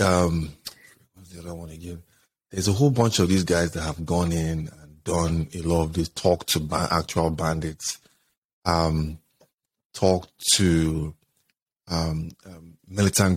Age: 30-49